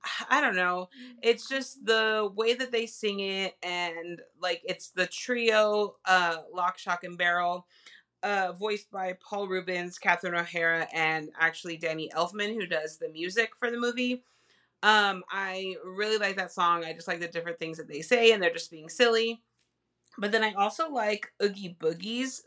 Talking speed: 175 wpm